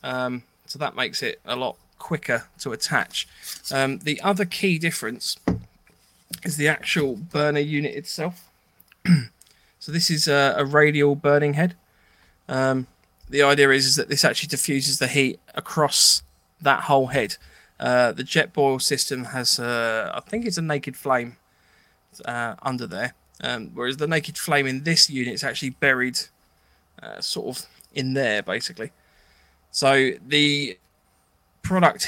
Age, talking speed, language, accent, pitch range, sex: 20-39, 150 wpm, English, British, 125-150 Hz, male